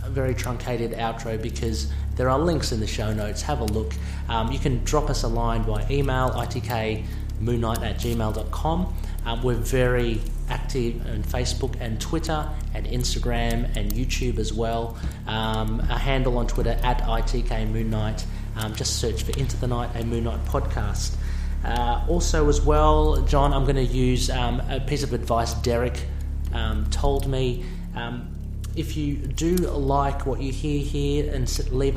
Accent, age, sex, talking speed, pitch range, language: Australian, 30-49, male, 165 wpm, 75-120 Hz, English